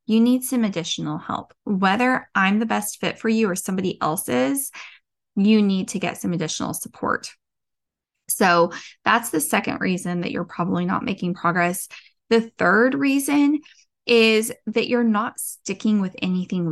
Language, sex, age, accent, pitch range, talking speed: English, female, 10-29, American, 185-235 Hz, 155 wpm